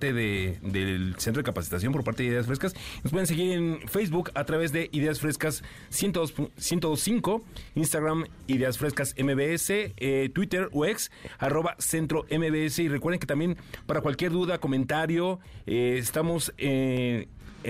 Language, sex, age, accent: Spanish, male, 40-59, Mexican